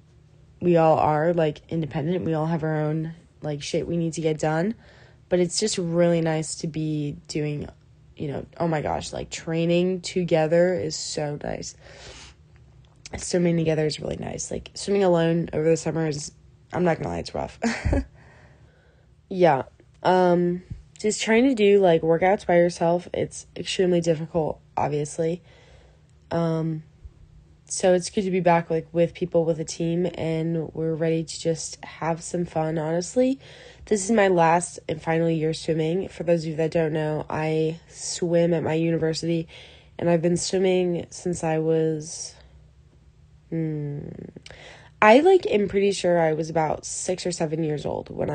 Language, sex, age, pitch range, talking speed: English, female, 20-39, 155-175 Hz, 165 wpm